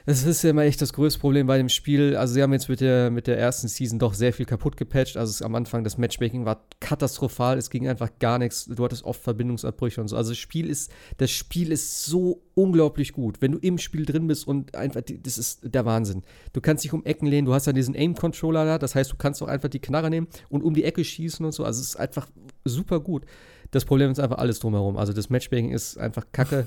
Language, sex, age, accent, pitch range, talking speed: German, male, 30-49, German, 120-150 Hz, 255 wpm